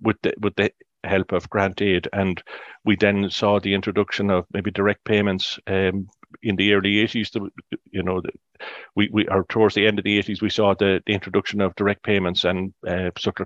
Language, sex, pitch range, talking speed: English, male, 95-105 Hz, 200 wpm